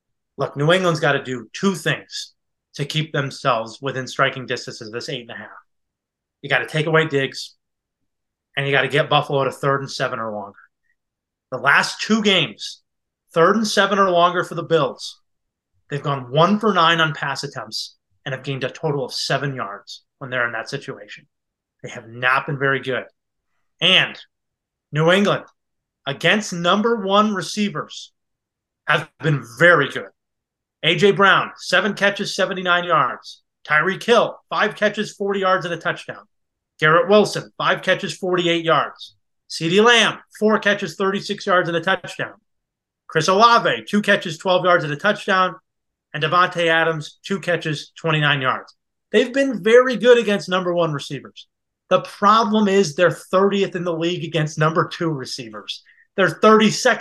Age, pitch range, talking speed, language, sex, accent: 30-49, 140-195 Hz, 160 wpm, English, male, American